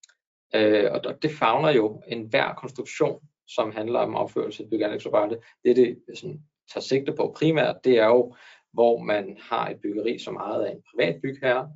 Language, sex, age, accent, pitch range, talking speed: Danish, male, 20-39, native, 120-155 Hz, 190 wpm